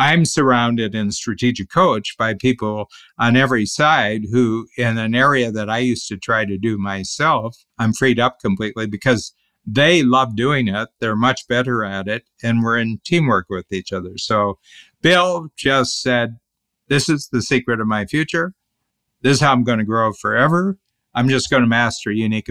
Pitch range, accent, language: 110-135 Hz, American, English